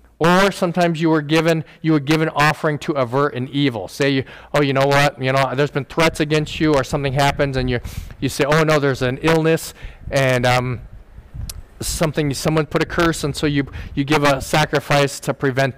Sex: male